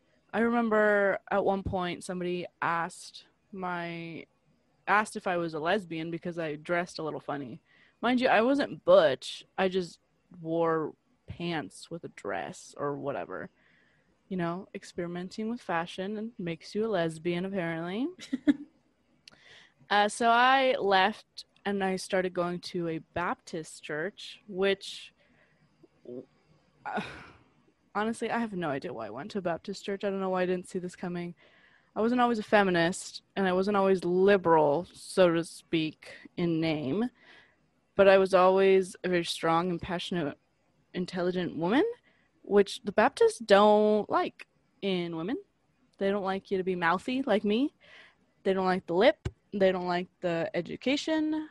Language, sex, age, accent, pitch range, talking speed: English, female, 20-39, American, 175-215 Hz, 155 wpm